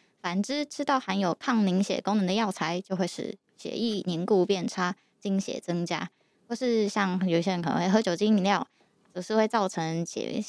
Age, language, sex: 10-29, Chinese, female